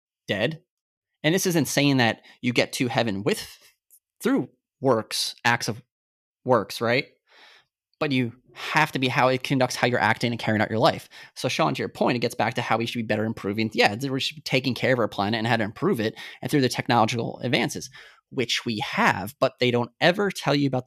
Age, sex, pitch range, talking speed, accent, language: 20-39, male, 115-145 Hz, 220 wpm, American, English